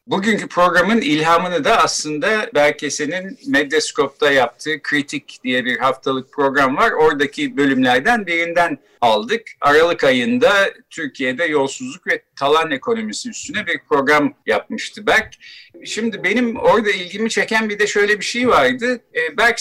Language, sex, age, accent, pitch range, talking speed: Turkish, male, 50-69, native, 155-260 Hz, 130 wpm